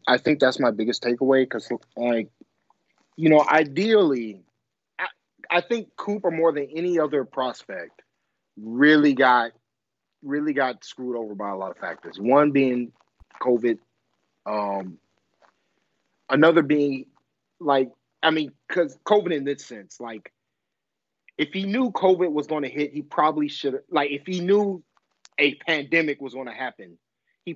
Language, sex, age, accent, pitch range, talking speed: English, male, 30-49, American, 125-155 Hz, 150 wpm